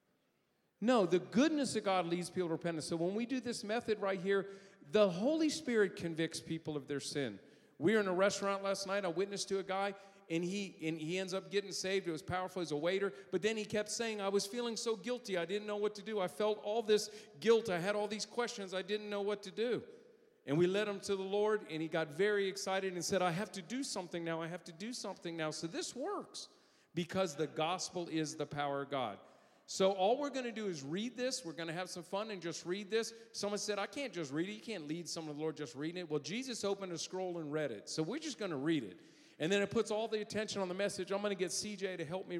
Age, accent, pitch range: 50-69, American, 170-210 Hz